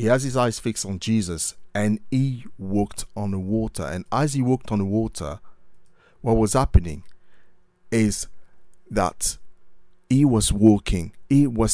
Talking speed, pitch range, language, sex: 155 wpm, 90-115 Hz, English, male